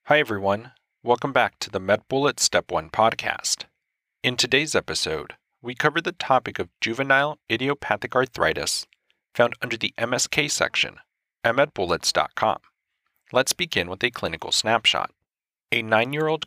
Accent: American